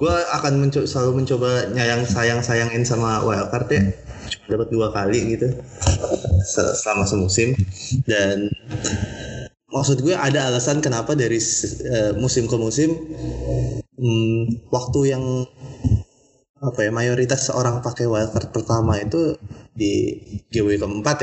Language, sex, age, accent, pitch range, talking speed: Indonesian, male, 20-39, native, 105-130 Hz, 115 wpm